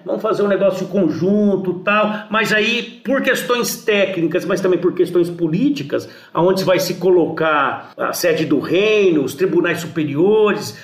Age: 60-79